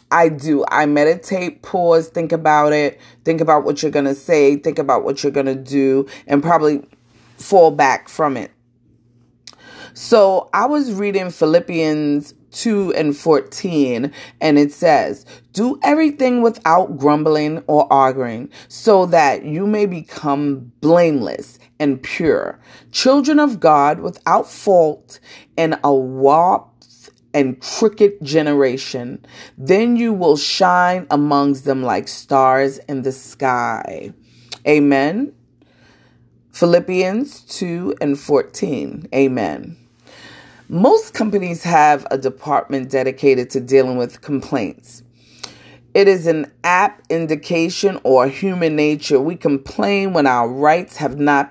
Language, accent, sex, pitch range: English, American, female, 135-175 Hz